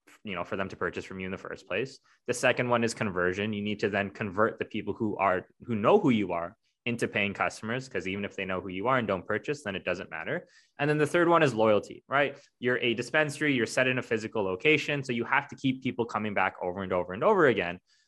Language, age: English, 20-39